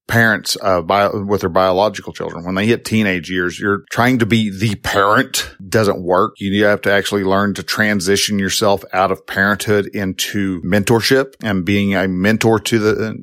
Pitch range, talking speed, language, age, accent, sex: 95-115 Hz, 175 wpm, English, 50-69, American, male